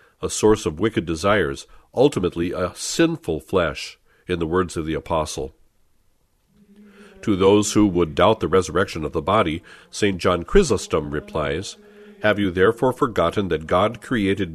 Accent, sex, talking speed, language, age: American, male, 150 wpm, English, 50-69